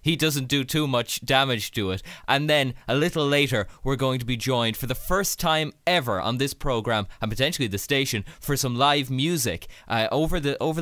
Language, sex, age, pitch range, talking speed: English, male, 20-39, 120-155 Hz, 210 wpm